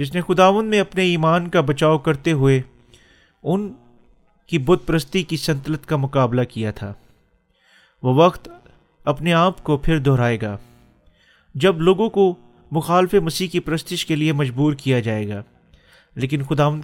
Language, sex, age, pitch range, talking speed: Urdu, male, 30-49, 130-175 Hz, 155 wpm